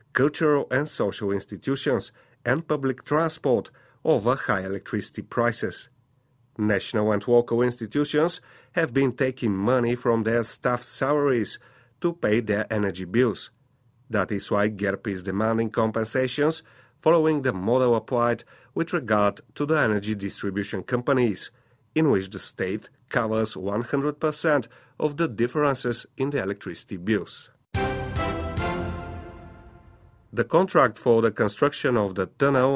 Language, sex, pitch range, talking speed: Bulgarian, male, 105-130 Hz, 125 wpm